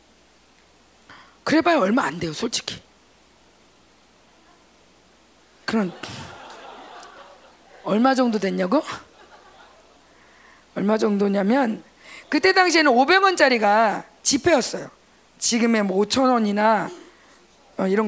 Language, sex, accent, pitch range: Korean, female, native, 220-300 Hz